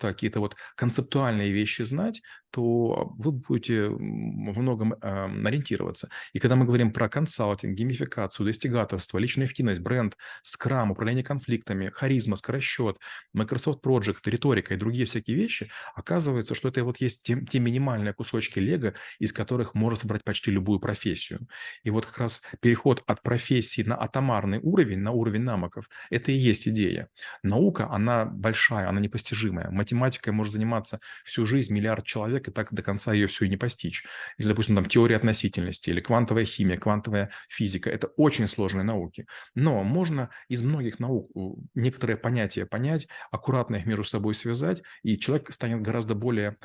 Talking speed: 155 wpm